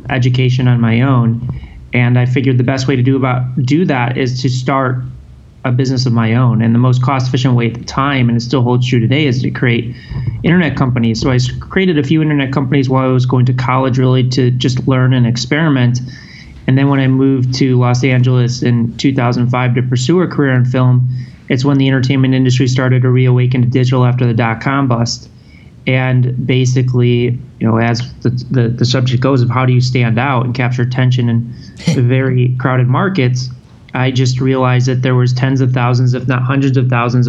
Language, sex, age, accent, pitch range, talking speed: English, male, 30-49, American, 125-135 Hz, 205 wpm